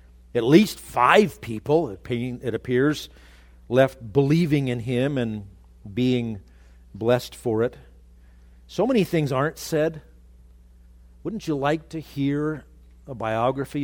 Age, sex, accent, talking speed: 50-69, male, American, 115 wpm